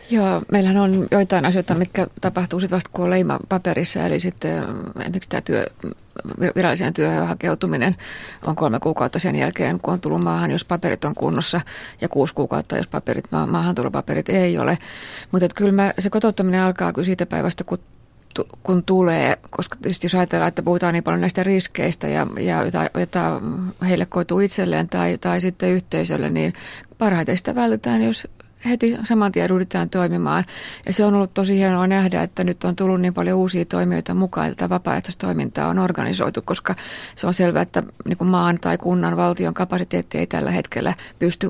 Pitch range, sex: 175-195 Hz, female